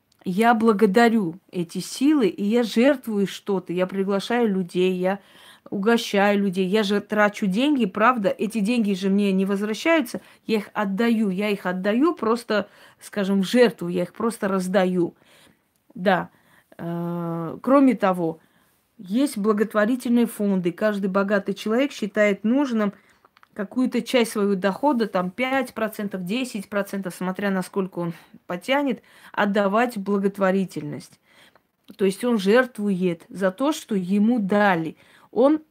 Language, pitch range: Russian, 190-235 Hz